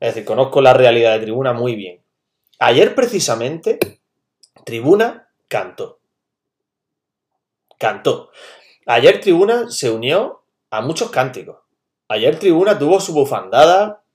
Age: 30-49